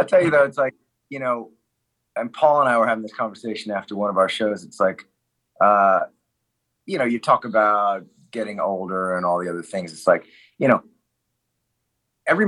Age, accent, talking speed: 30-49, American, 195 wpm